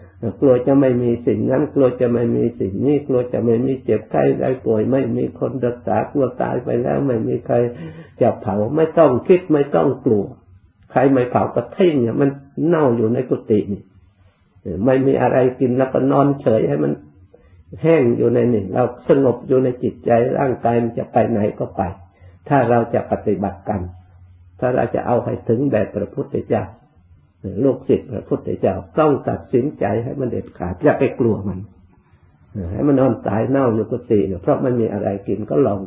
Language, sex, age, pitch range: Thai, male, 50-69, 95-130 Hz